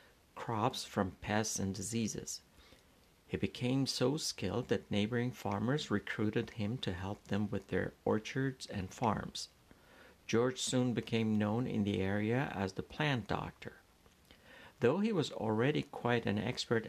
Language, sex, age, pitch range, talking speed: Persian, male, 60-79, 105-125 Hz, 140 wpm